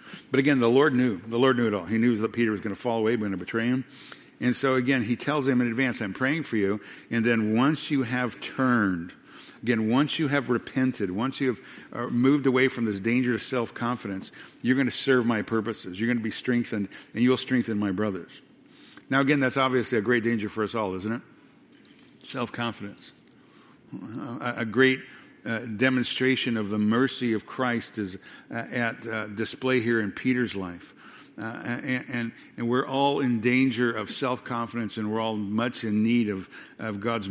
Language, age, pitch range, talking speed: English, 60-79, 110-130 Hz, 195 wpm